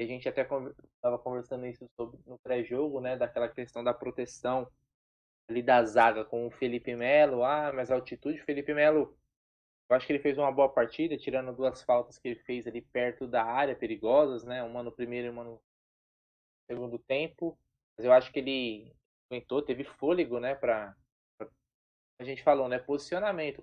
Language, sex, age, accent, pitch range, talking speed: Portuguese, male, 20-39, Brazilian, 120-155 Hz, 175 wpm